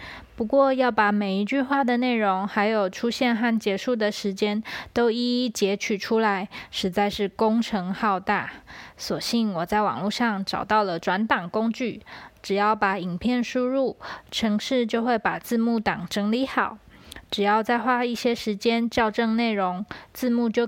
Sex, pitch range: female, 205-240 Hz